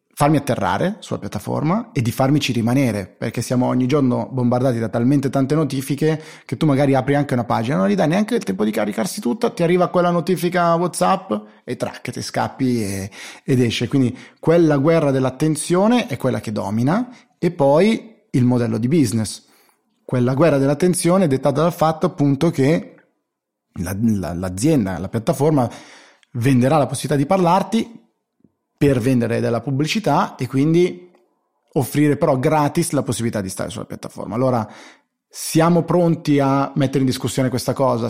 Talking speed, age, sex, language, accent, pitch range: 160 wpm, 30-49, male, Italian, native, 120-160 Hz